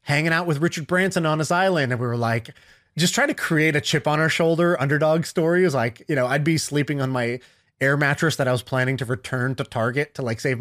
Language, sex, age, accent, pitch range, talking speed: English, male, 20-39, American, 130-160 Hz, 260 wpm